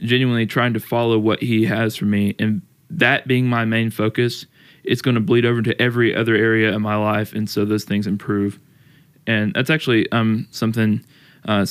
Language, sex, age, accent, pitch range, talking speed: English, male, 20-39, American, 105-115 Hz, 195 wpm